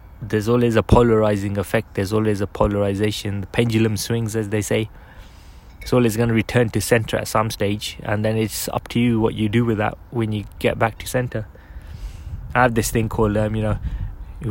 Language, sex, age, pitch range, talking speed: English, male, 20-39, 100-115 Hz, 205 wpm